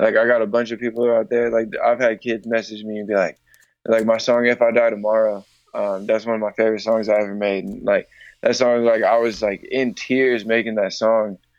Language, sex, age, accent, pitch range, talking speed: English, male, 20-39, American, 100-120 Hz, 245 wpm